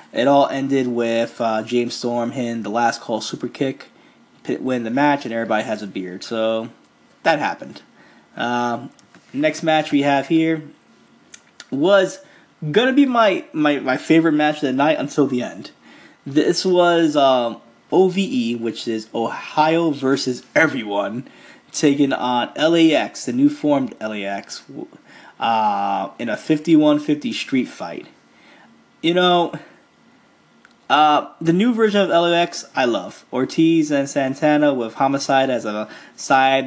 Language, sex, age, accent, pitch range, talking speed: English, male, 20-39, American, 120-155 Hz, 140 wpm